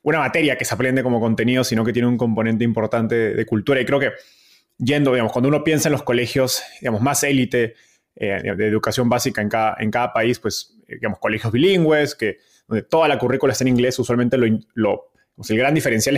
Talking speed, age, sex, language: 215 wpm, 20-39, male, Spanish